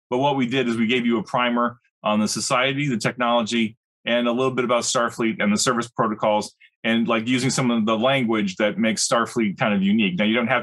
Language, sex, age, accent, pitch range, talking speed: English, male, 30-49, American, 110-140 Hz, 235 wpm